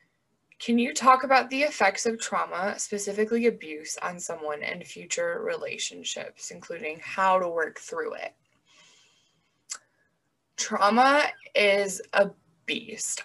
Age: 20-39